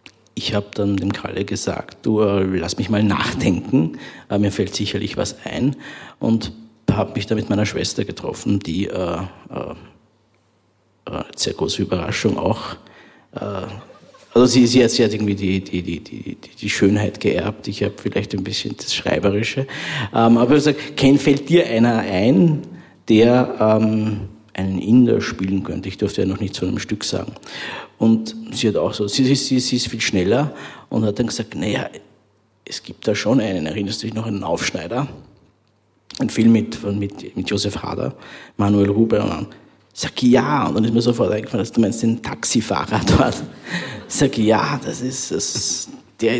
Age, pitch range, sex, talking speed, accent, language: 50-69, 100-120 Hz, male, 180 wpm, Austrian, German